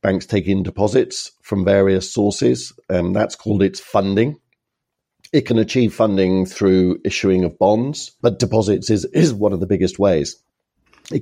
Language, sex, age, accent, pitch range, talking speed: English, male, 50-69, British, 95-110 Hz, 160 wpm